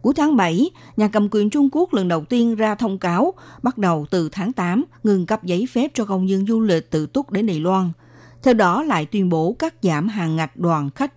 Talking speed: 235 wpm